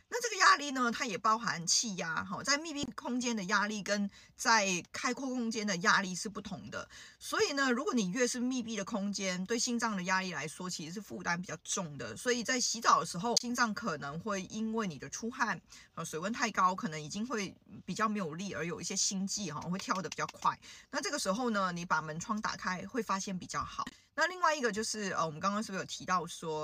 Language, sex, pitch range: Chinese, female, 175-230 Hz